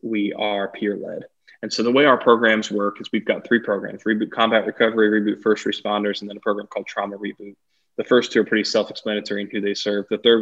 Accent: American